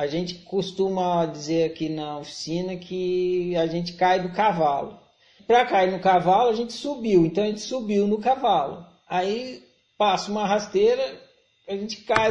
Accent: Brazilian